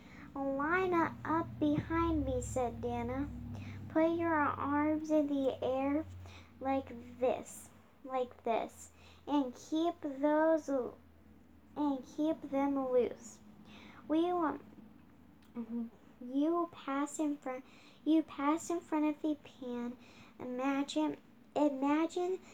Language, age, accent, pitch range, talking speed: English, 10-29, American, 245-305 Hz, 105 wpm